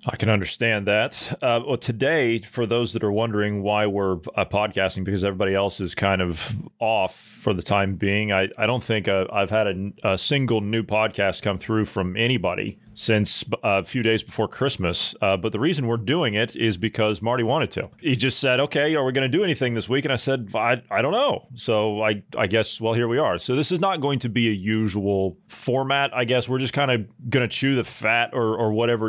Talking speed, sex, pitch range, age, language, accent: 230 wpm, male, 105-130 Hz, 30-49, English, American